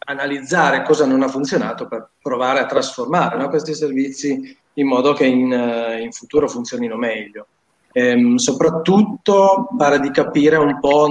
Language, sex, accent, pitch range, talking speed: Italian, male, native, 130-160 Hz, 145 wpm